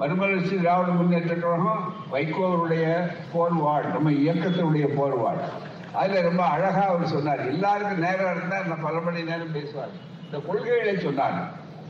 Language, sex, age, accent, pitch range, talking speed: Tamil, male, 60-79, native, 160-200 Hz, 130 wpm